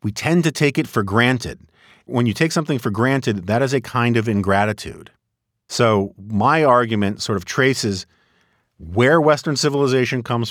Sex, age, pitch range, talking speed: male, 50-69, 100-120 Hz, 165 wpm